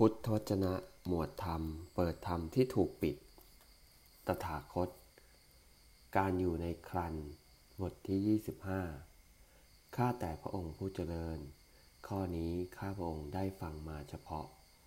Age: 20-39